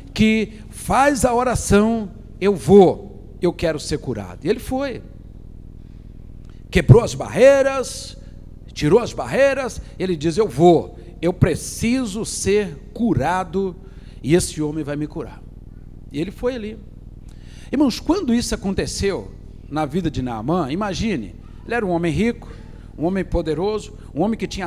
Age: 60-79